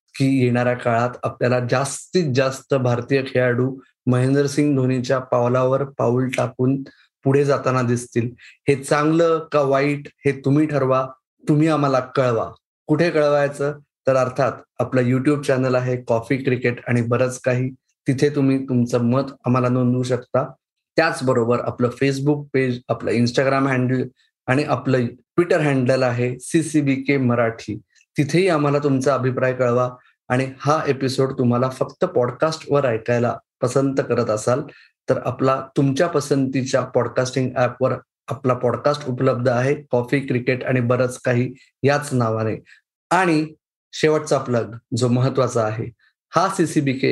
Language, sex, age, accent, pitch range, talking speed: Marathi, male, 20-39, native, 125-145 Hz, 110 wpm